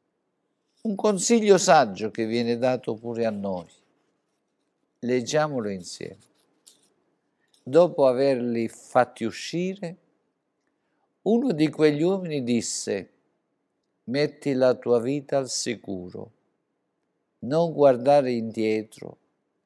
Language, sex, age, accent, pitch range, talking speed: Italian, male, 50-69, native, 110-150 Hz, 90 wpm